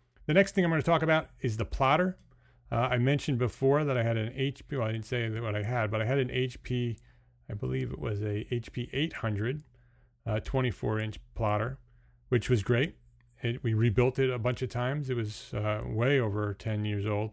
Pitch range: 105-125 Hz